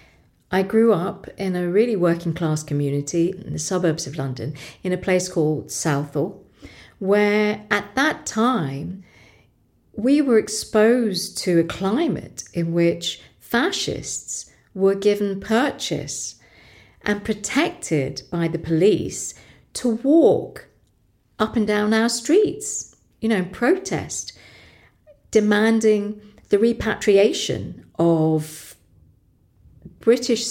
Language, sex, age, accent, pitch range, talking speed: English, female, 50-69, British, 155-220 Hz, 110 wpm